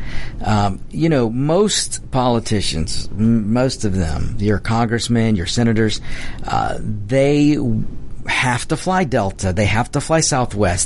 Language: English